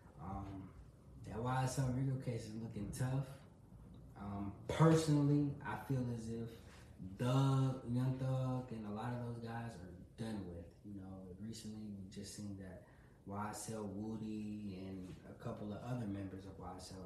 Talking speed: 150 wpm